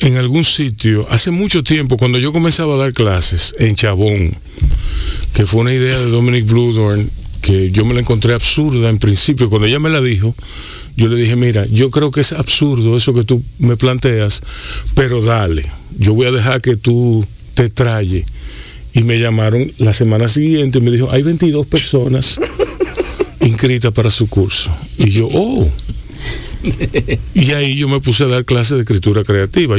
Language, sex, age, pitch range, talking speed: Spanish, male, 50-69, 110-140 Hz, 175 wpm